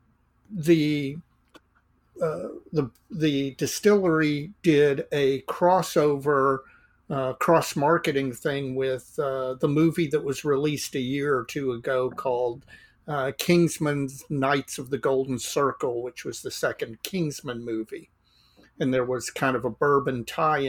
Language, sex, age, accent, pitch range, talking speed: English, male, 50-69, American, 130-155 Hz, 135 wpm